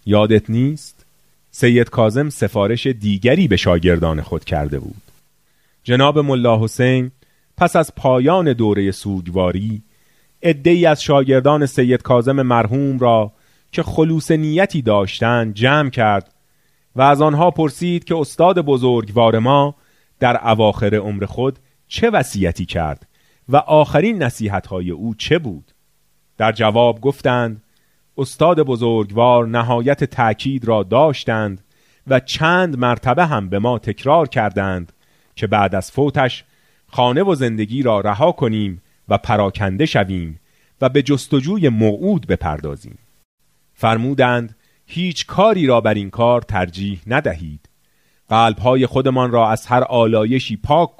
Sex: male